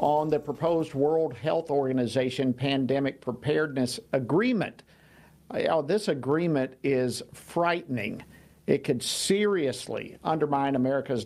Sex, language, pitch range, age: male, English, 140-195 Hz, 50-69